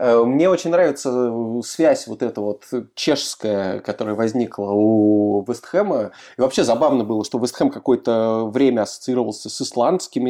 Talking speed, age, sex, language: 135 wpm, 20-39, male, Russian